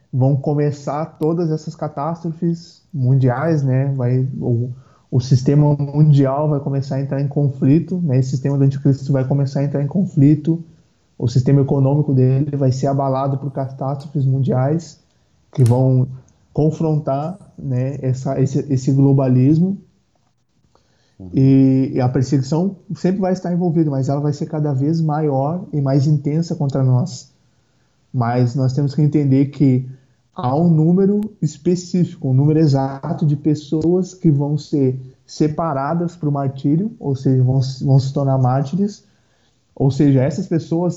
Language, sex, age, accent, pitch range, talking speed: Portuguese, male, 20-39, Brazilian, 135-155 Hz, 145 wpm